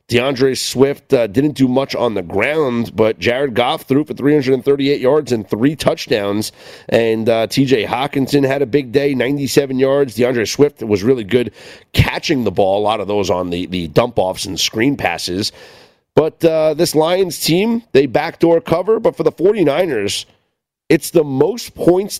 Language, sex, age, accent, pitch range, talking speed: English, male, 40-59, American, 105-140 Hz, 175 wpm